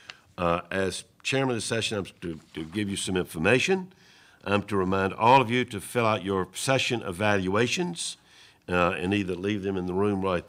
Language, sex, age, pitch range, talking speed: English, male, 60-79, 90-110 Hz, 195 wpm